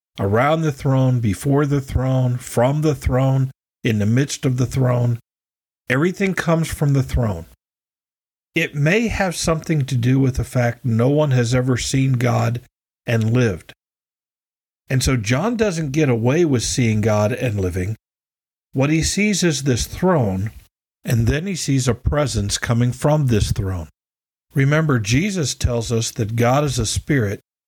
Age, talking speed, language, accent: 50-69, 160 wpm, English, American